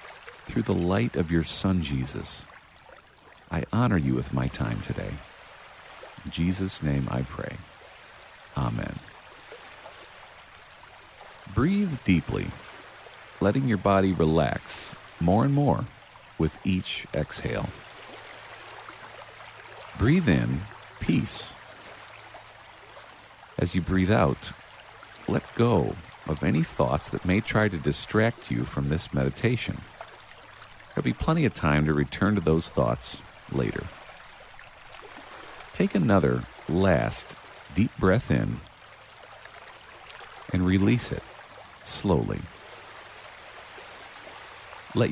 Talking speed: 100 wpm